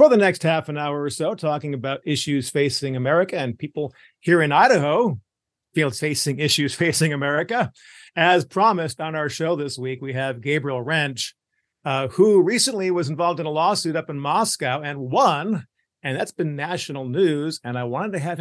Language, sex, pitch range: English, male, 135-165 Hz